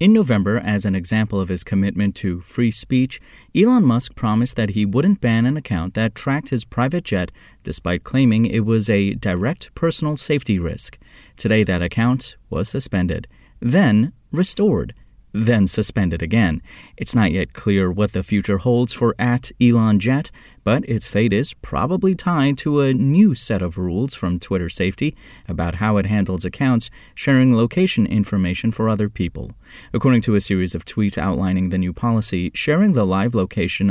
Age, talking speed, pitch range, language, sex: 30-49, 170 wpm, 95-125 Hz, English, male